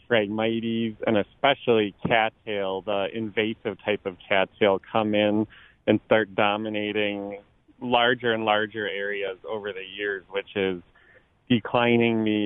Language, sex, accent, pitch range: English, male, American, 100-115 Hz